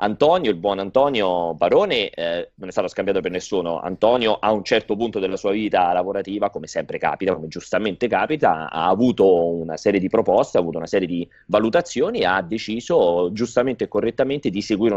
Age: 30-49